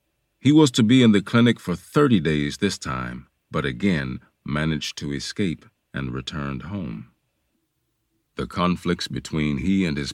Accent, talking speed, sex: American, 155 wpm, male